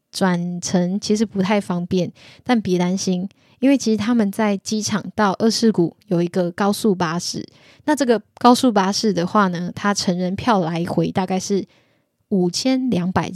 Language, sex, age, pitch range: Chinese, female, 10-29, 185-215 Hz